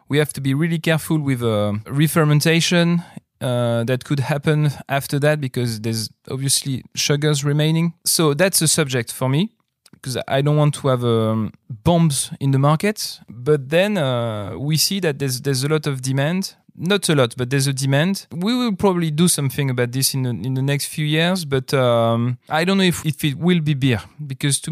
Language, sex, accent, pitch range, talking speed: German, male, French, 130-165 Hz, 200 wpm